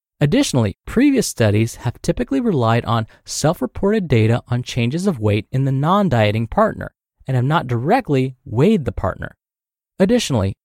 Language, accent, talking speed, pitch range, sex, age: English, American, 150 wpm, 115-165 Hz, male, 30-49